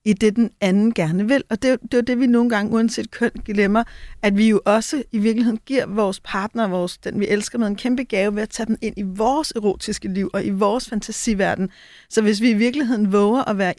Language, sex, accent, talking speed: Danish, female, native, 240 wpm